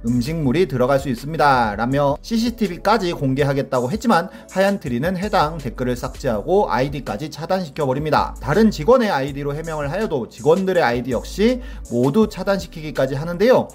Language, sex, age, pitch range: Korean, male, 30-49, 125-200 Hz